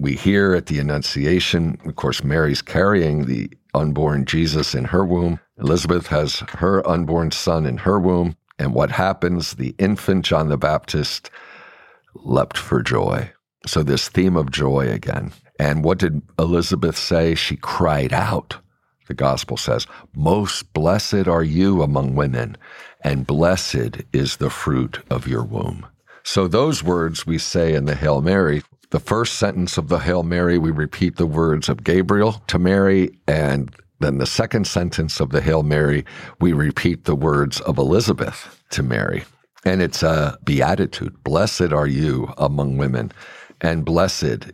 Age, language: 60-79, English